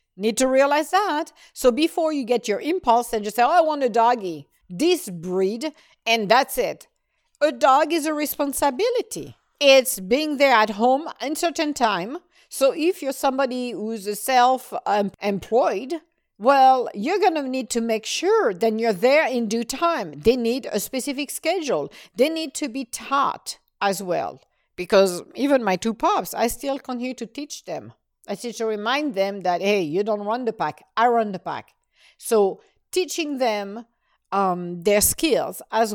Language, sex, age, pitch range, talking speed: English, female, 50-69, 220-300 Hz, 170 wpm